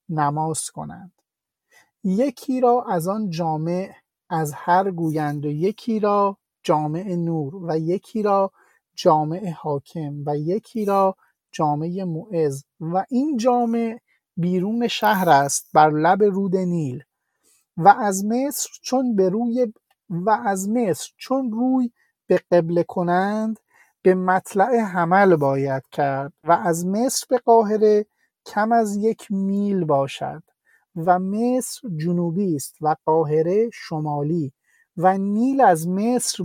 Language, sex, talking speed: Persian, male, 120 wpm